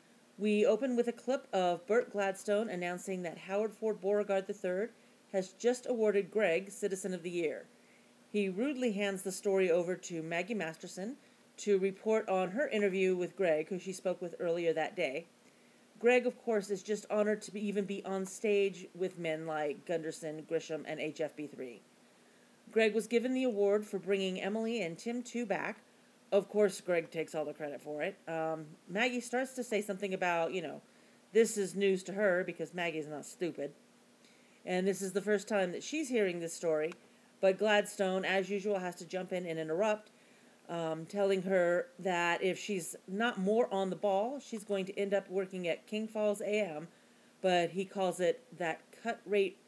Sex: female